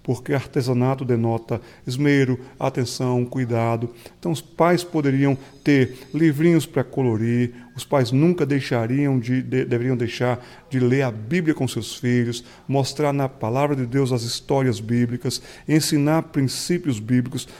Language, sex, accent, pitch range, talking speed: Portuguese, male, Brazilian, 125-165 Hz, 125 wpm